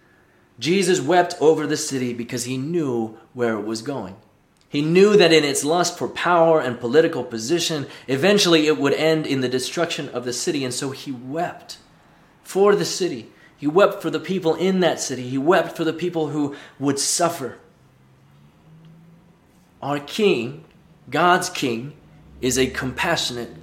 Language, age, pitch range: English, 30-49, 135-180 Hz